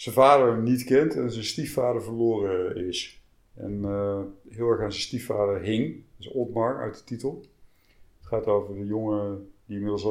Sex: male